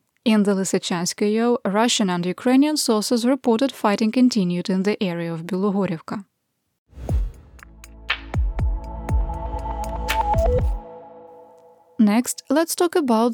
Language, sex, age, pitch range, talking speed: English, female, 20-39, 190-245 Hz, 85 wpm